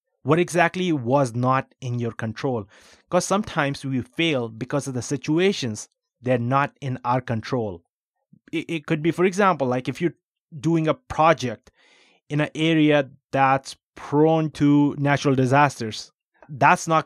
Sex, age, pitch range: male, 20-39, 125-155 Hz